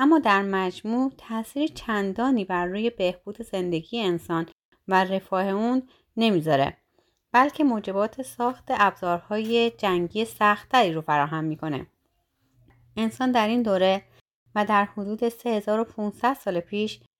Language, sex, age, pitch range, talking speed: Persian, female, 30-49, 180-225 Hz, 115 wpm